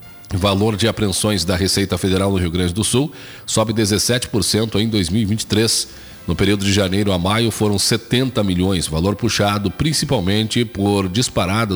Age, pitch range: 40-59, 95-110 Hz